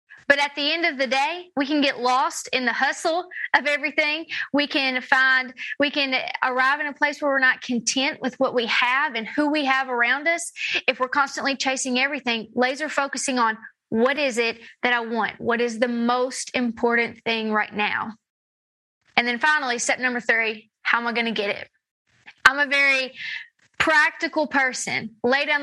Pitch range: 235-280 Hz